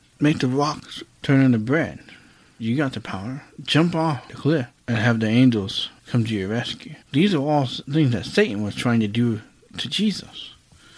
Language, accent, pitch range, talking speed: English, American, 115-150 Hz, 185 wpm